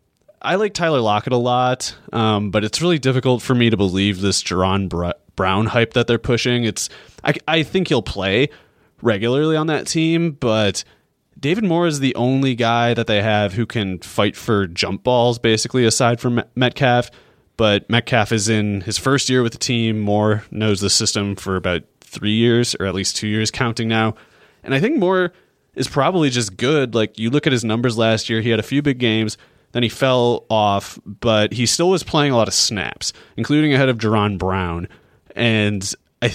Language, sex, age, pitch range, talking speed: English, male, 20-39, 100-125 Hz, 195 wpm